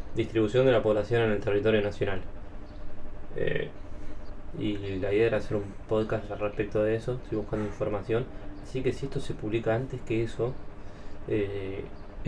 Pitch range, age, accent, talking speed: 100-115 Hz, 20-39, Argentinian, 160 wpm